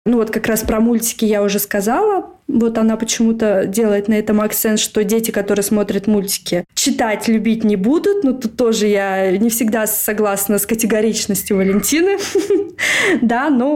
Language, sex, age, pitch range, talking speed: Russian, female, 20-39, 205-245 Hz, 160 wpm